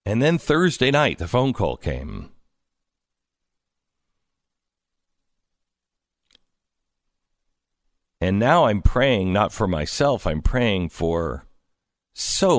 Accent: American